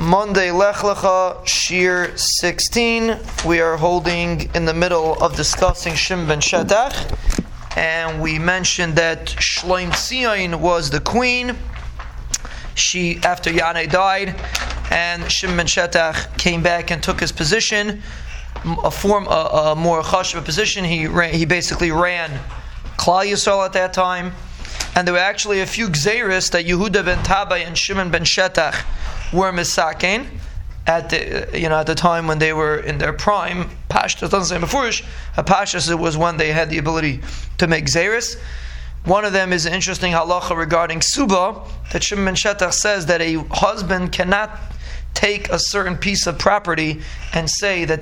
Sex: male